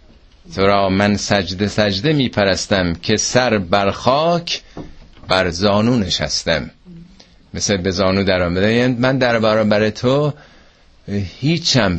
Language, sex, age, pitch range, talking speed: Persian, male, 50-69, 100-135 Hz, 115 wpm